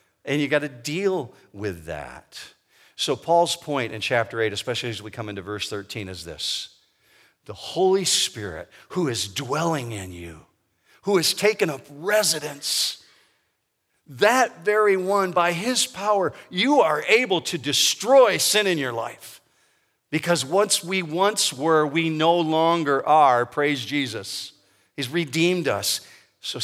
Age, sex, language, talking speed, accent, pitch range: 50-69, male, English, 145 wpm, American, 110-165 Hz